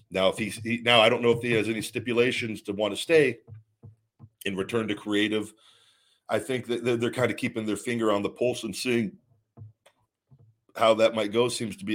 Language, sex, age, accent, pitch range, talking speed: English, male, 40-59, American, 100-120 Hz, 210 wpm